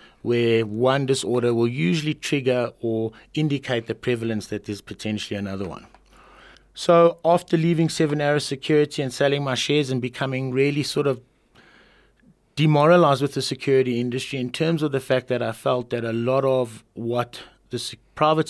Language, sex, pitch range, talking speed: English, male, 115-135 Hz, 160 wpm